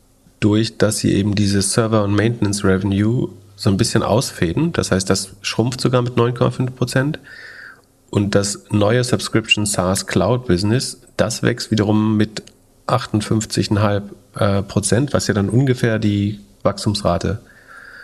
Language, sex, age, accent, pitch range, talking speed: German, male, 40-59, German, 100-120 Hz, 115 wpm